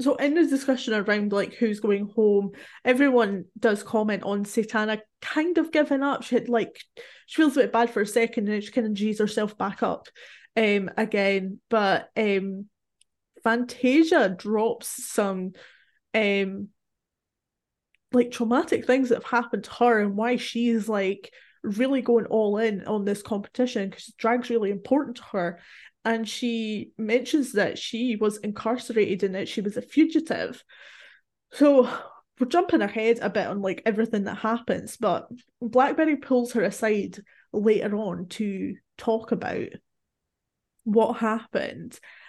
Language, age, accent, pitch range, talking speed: English, 20-39, British, 210-245 Hz, 150 wpm